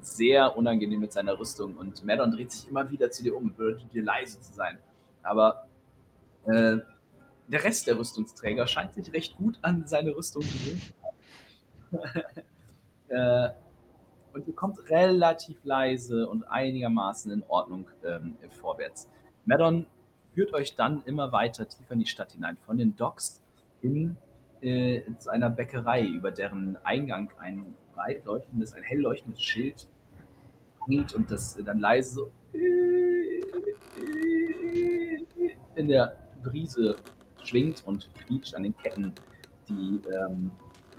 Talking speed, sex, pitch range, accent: 135 wpm, male, 110-165 Hz, German